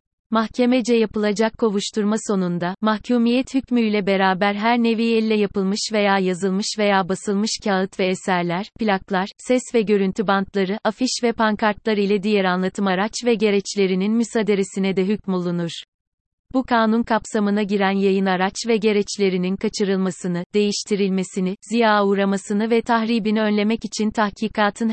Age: 30-49